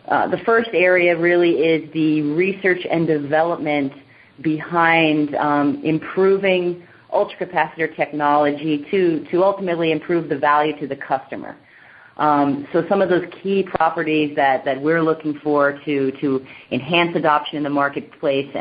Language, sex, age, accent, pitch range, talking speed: English, female, 30-49, American, 140-170 Hz, 140 wpm